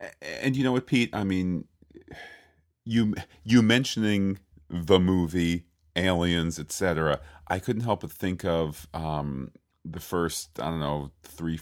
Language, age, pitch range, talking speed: English, 40-59, 80-90 Hz, 140 wpm